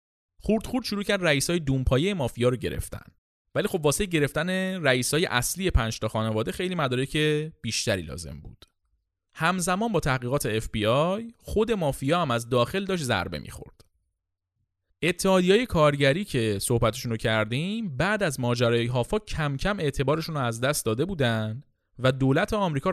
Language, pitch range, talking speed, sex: Persian, 110-170 Hz, 150 wpm, male